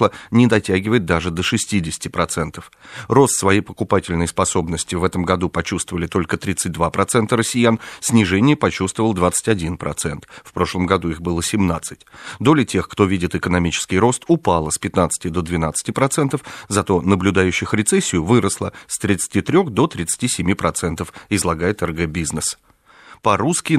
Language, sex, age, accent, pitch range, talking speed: Russian, male, 40-59, native, 85-110 Hz, 120 wpm